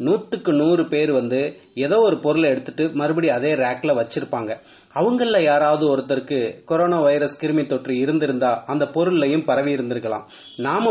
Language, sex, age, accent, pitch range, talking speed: English, male, 30-49, Indian, 140-175 Hz, 125 wpm